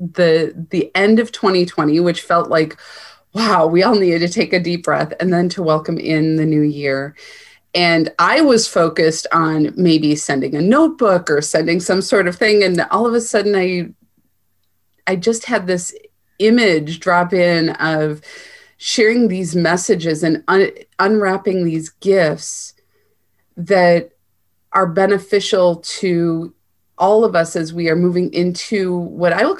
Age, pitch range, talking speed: 30-49, 155-195 Hz, 160 wpm